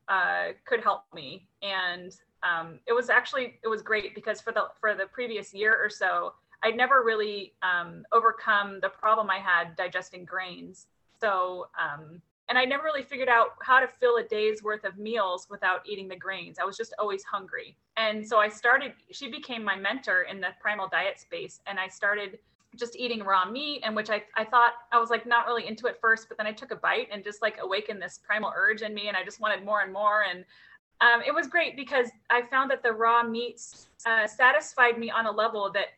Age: 30-49